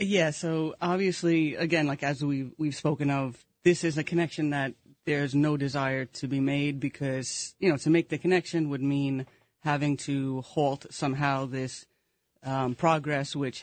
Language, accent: English, American